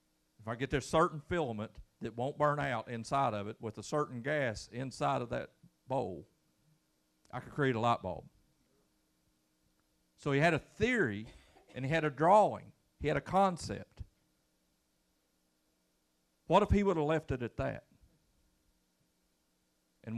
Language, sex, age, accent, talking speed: English, male, 50-69, American, 150 wpm